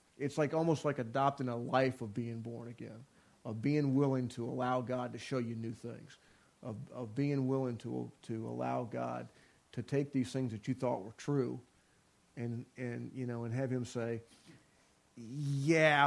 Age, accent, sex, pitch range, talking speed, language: 40-59, American, male, 120-140 Hz, 180 wpm, English